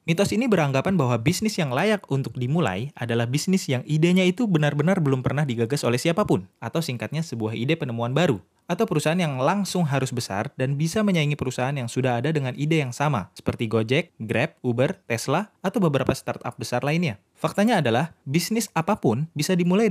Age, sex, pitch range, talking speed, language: 20-39, male, 120-165 Hz, 180 wpm, Indonesian